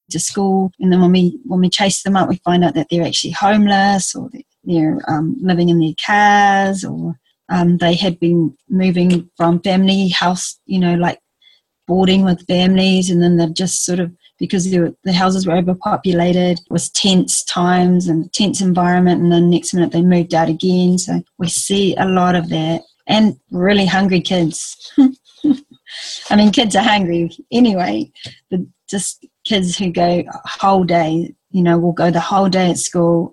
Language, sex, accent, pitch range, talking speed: English, female, Australian, 175-195 Hz, 180 wpm